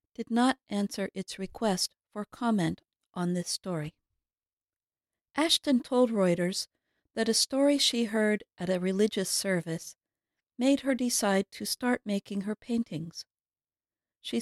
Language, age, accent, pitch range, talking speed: English, 50-69, American, 180-235 Hz, 130 wpm